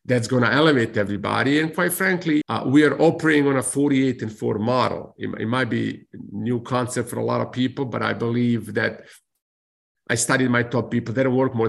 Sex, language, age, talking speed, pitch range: male, English, 50-69, 215 wpm, 125-175 Hz